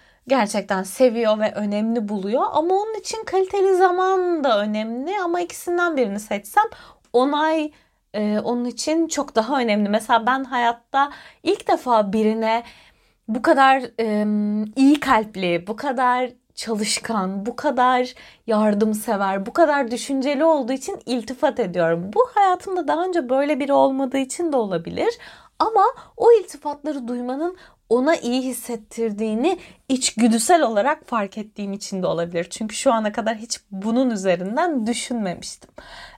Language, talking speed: Turkish, 130 wpm